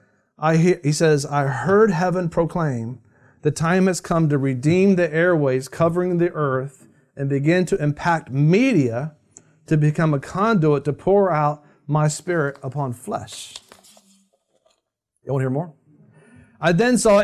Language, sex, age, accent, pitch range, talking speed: English, male, 40-59, American, 135-180 Hz, 145 wpm